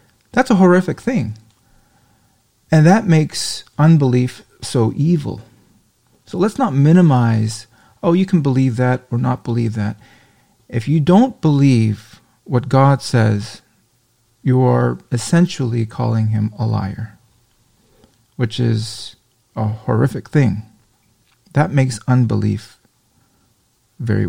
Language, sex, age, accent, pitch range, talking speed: English, male, 40-59, American, 110-135 Hz, 115 wpm